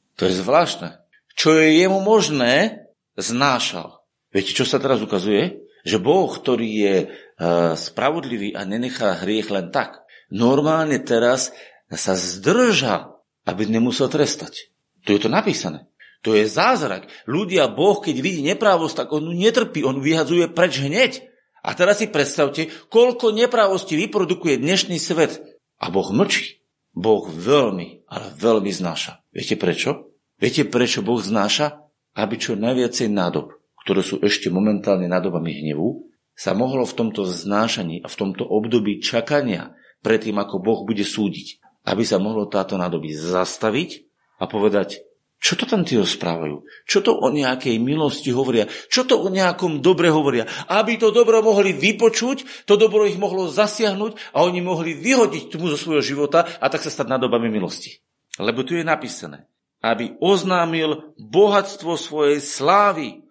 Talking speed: 150 wpm